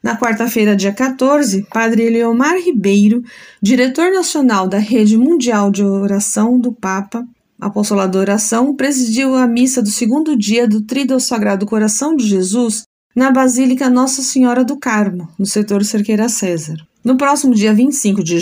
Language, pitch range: Portuguese, 205-255 Hz